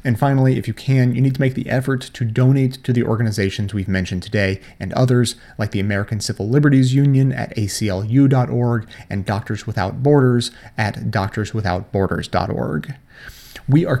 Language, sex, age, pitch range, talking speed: English, male, 30-49, 110-130 Hz, 160 wpm